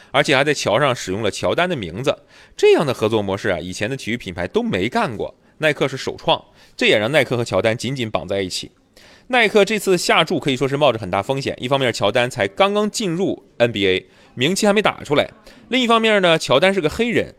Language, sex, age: Chinese, male, 20-39